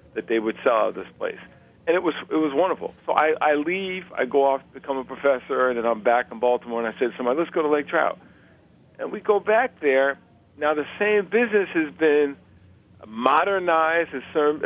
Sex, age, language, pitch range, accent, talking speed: male, 50-69, English, 130-170 Hz, American, 215 wpm